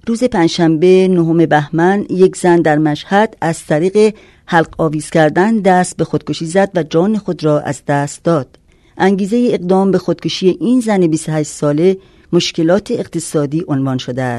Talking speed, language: 150 wpm, Persian